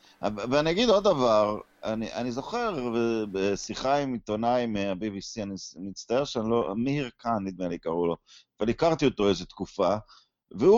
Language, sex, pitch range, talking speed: Hebrew, male, 120-180 Hz, 160 wpm